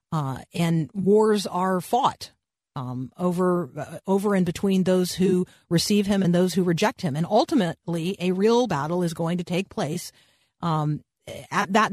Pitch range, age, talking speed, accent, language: 165-205 Hz, 40-59, 165 wpm, American, English